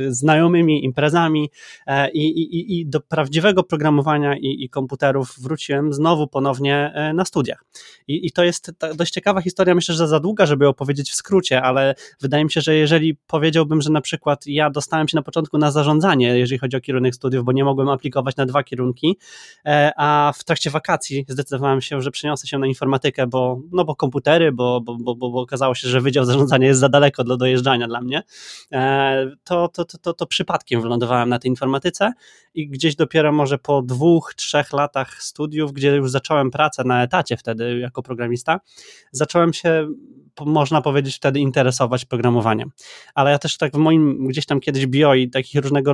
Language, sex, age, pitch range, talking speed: Polish, male, 20-39, 130-155 Hz, 185 wpm